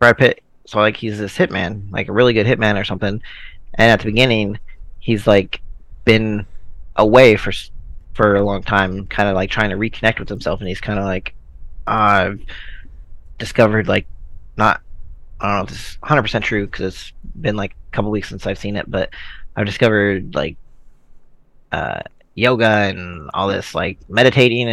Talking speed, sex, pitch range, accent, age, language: 180 wpm, male, 95-120 Hz, American, 20-39, English